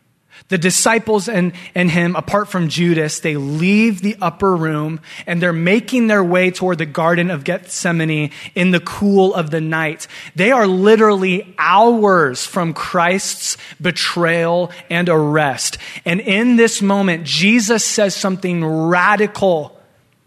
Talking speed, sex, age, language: 135 wpm, male, 20-39, English